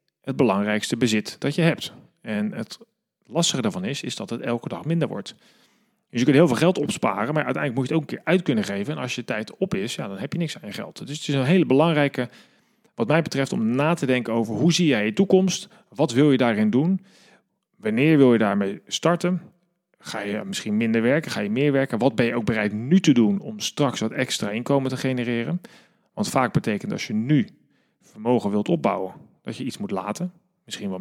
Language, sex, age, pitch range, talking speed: Dutch, male, 40-59, 120-175 Hz, 230 wpm